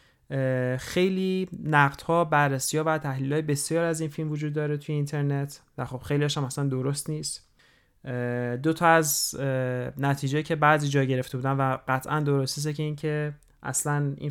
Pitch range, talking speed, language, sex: 130-150 Hz, 170 wpm, Persian, male